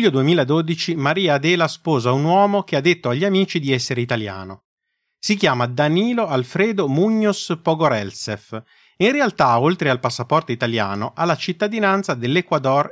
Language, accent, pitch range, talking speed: Italian, native, 120-180 Hz, 145 wpm